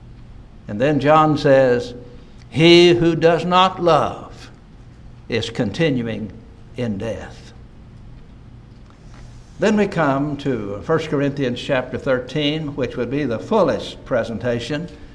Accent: American